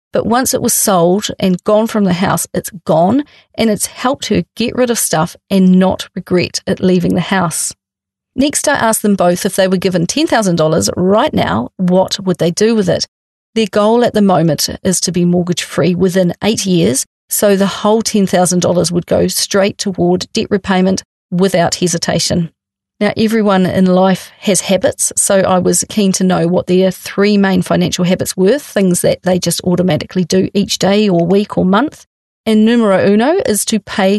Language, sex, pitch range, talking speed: English, female, 180-210 Hz, 185 wpm